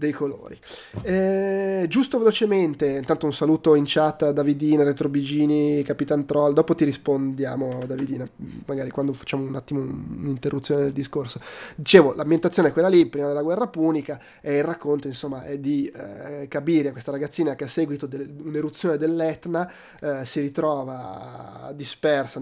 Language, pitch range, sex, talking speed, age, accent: Italian, 135-155 Hz, male, 150 wpm, 20-39, native